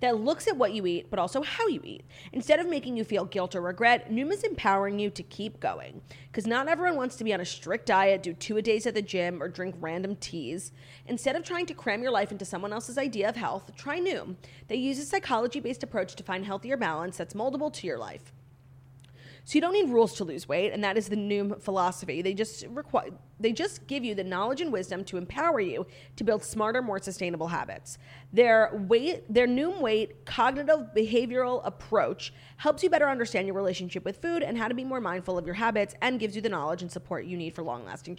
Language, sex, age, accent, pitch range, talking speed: English, female, 30-49, American, 180-250 Hz, 230 wpm